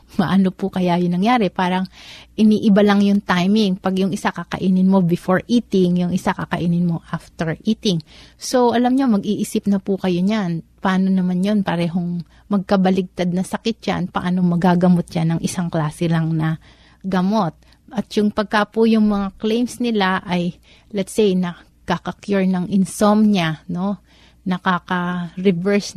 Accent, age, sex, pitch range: native, 30-49, female, 180-205 Hz